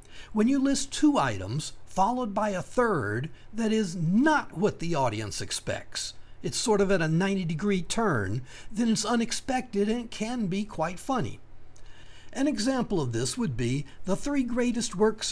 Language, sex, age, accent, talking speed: English, male, 60-79, American, 165 wpm